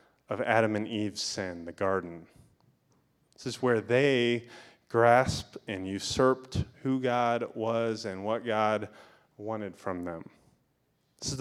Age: 30-49